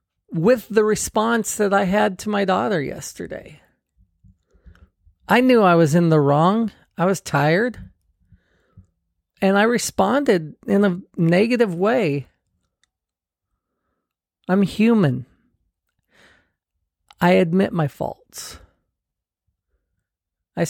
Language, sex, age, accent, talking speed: English, male, 40-59, American, 100 wpm